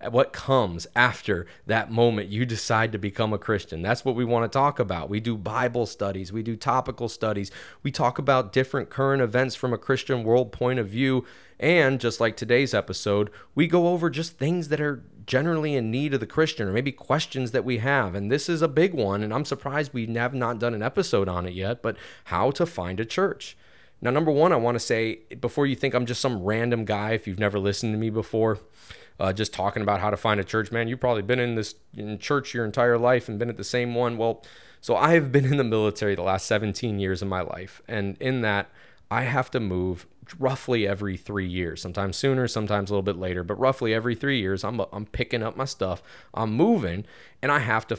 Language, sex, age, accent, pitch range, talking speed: English, male, 30-49, American, 105-130 Hz, 230 wpm